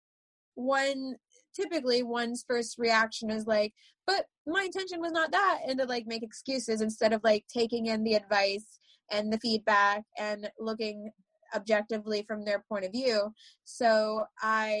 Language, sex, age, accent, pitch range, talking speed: English, female, 20-39, American, 210-260 Hz, 155 wpm